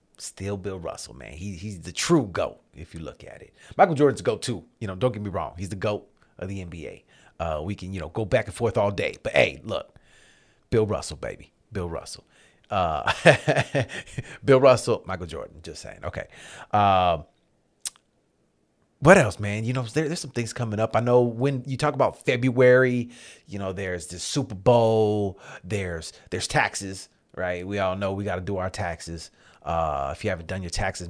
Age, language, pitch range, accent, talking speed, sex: 30-49, English, 85-115 Hz, American, 200 wpm, male